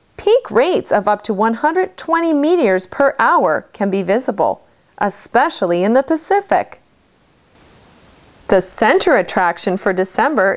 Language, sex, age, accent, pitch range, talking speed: English, female, 30-49, American, 195-290 Hz, 120 wpm